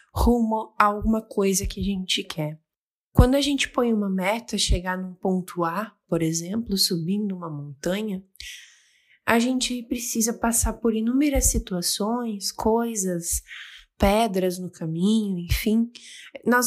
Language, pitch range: Portuguese, 190-260 Hz